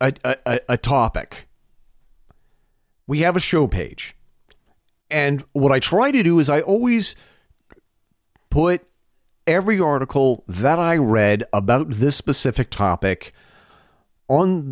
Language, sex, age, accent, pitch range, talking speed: English, male, 40-59, American, 120-170 Hz, 120 wpm